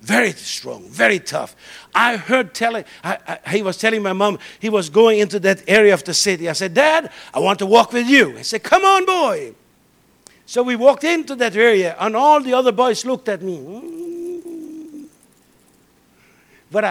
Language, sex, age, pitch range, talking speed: English, male, 60-79, 200-280 Hz, 180 wpm